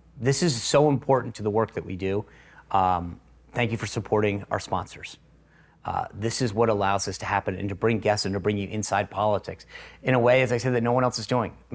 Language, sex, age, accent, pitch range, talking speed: English, male, 40-59, American, 105-130 Hz, 245 wpm